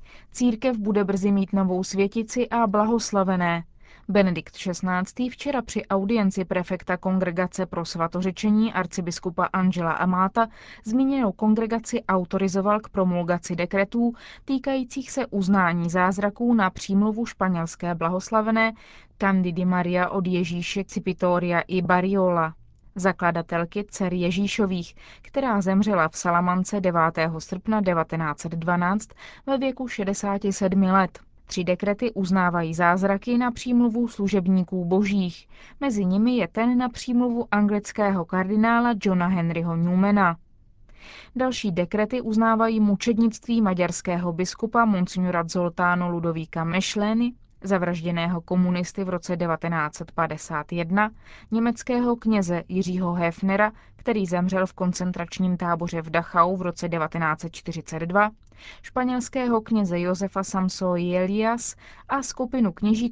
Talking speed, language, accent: 105 wpm, Czech, native